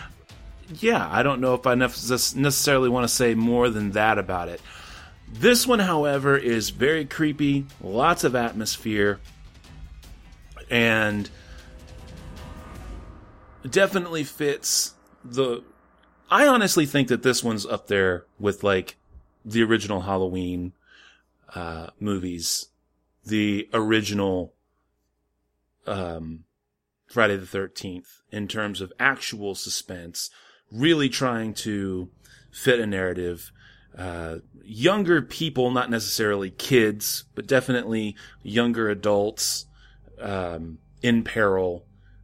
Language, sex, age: English, male, 30-49